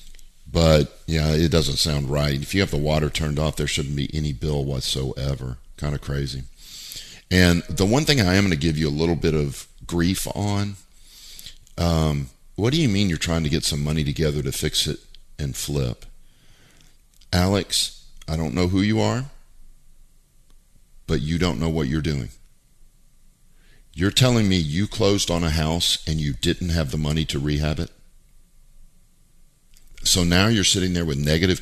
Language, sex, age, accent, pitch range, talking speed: English, male, 50-69, American, 70-90 Hz, 175 wpm